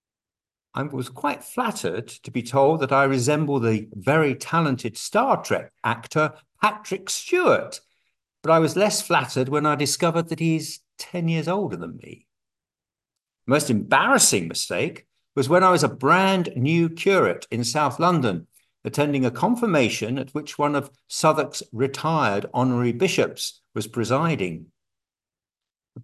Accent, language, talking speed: British, English, 140 wpm